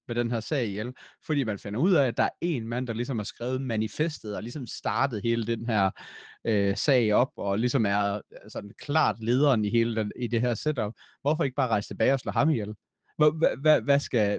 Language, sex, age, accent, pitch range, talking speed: Danish, male, 30-49, native, 110-150 Hz, 215 wpm